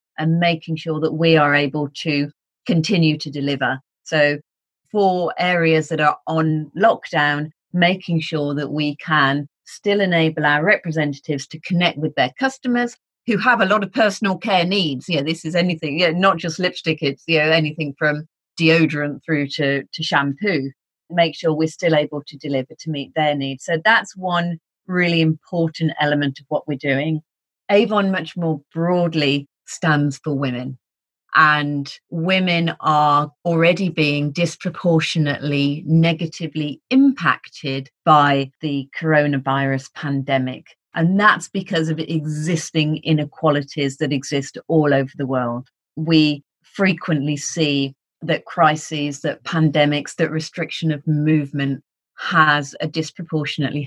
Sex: female